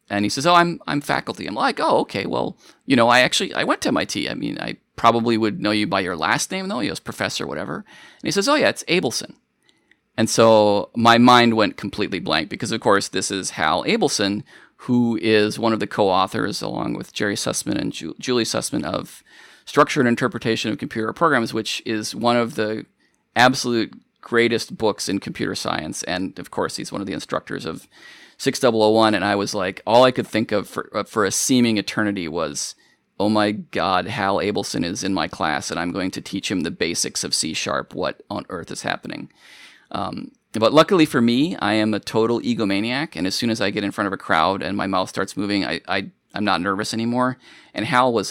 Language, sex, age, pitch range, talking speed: English, male, 30-49, 105-120 Hz, 215 wpm